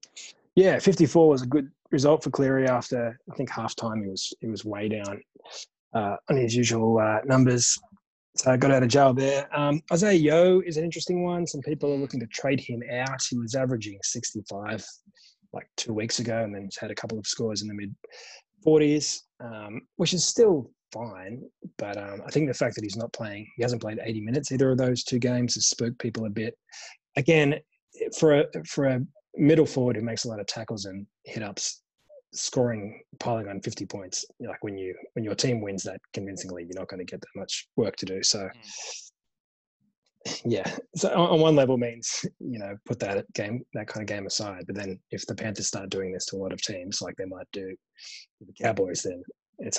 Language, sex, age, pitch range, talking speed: English, male, 20-39, 105-145 Hz, 210 wpm